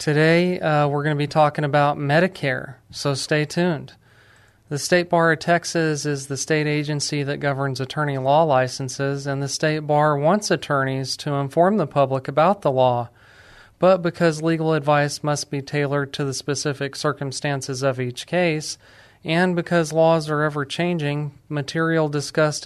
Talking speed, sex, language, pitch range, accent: 160 wpm, male, English, 130-150 Hz, American